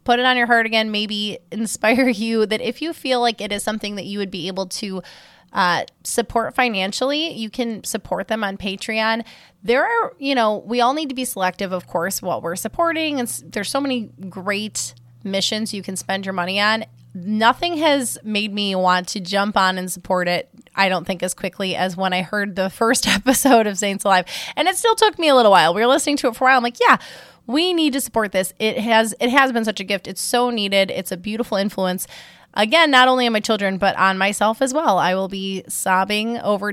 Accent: American